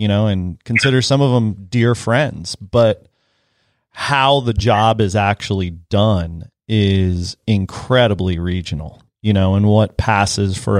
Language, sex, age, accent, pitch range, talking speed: English, male, 30-49, American, 95-115 Hz, 140 wpm